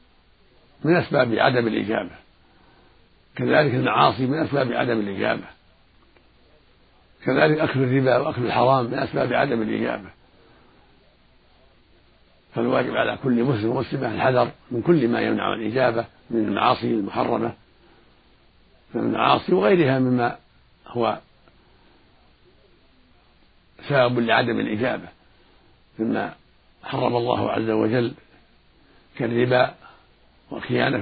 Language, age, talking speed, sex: Arabic, 60-79, 90 wpm, male